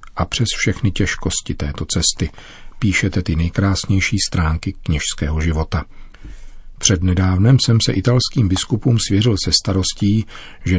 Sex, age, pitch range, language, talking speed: male, 40-59, 85-105 Hz, Czech, 120 wpm